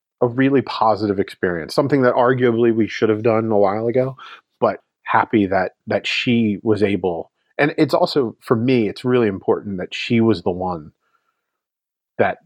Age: 30-49